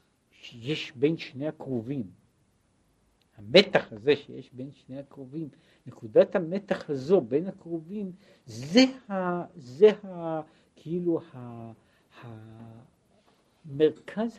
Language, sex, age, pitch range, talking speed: Hebrew, male, 60-79, 120-175 Hz, 95 wpm